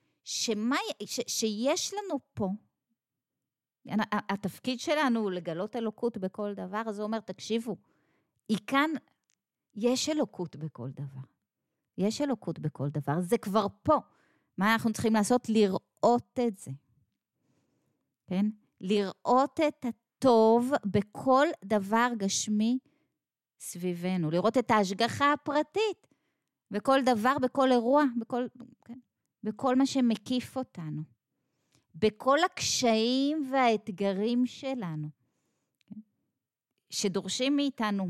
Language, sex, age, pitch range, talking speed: Hebrew, female, 30-49, 190-255 Hz, 105 wpm